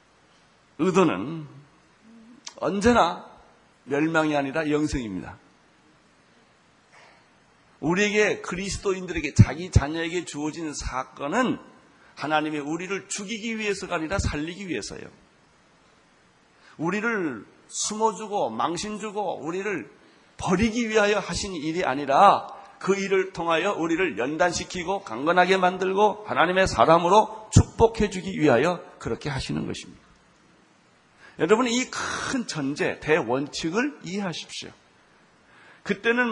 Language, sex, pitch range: Korean, male, 160-215 Hz